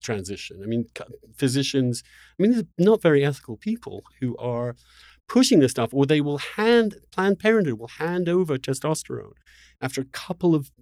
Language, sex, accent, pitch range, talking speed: English, male, British, 120-165 Hz, 170 wpm